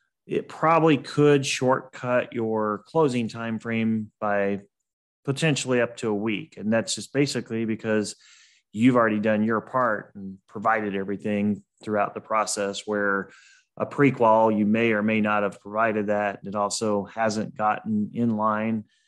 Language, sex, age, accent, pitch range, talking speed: English, male, 30-49, American, 105-125 Hz, 145 wpm